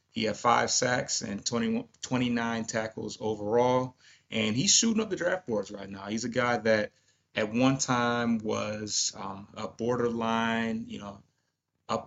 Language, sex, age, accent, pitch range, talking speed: English, male, 30-49, American, 105-125 Hz, 160 wpm